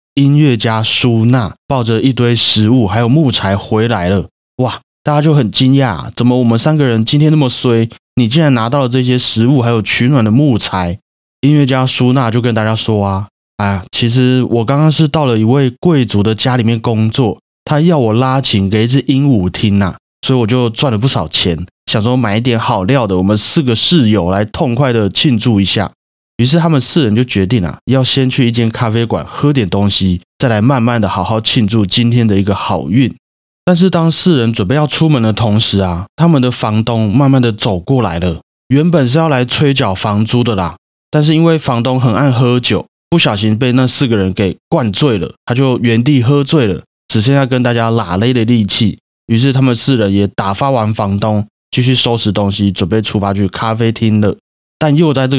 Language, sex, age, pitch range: Chinese, male, 30-49, 105-135 Hz